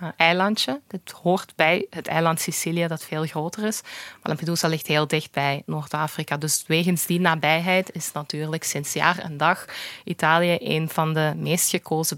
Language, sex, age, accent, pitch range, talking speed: Dutch, female, 20-39, Belgian, 165-190 Hz, 170 wpm